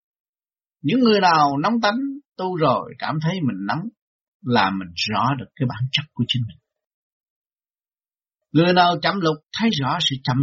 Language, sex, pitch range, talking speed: Vietnamese, male, 135-195 Hz, 165 wpm